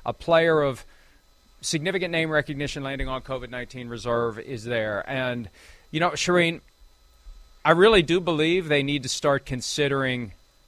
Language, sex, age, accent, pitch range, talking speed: English, male, 40-59, American, 130-180 Hz, 140 wpm